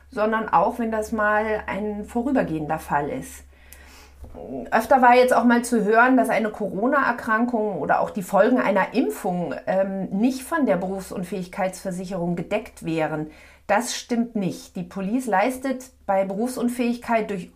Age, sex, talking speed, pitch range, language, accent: 40-59, female, 140 wpm, 190-235 Hz, German, German